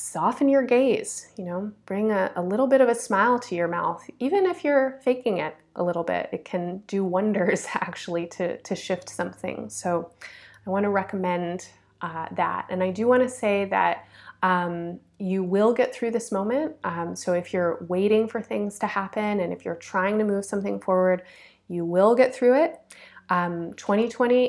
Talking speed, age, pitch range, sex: 190 wpm, 20-39, 180-230 Hz, female